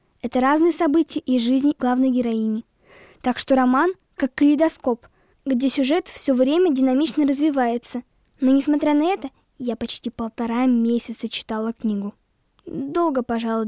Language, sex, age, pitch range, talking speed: Russian, female, 10-29, 245-310 Hz, 135 wpm